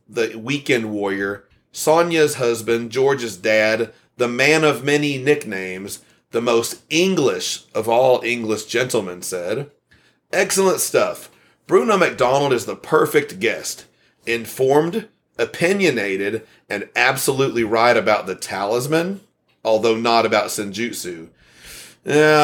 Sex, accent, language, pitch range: male, American, English, 105-145 Hz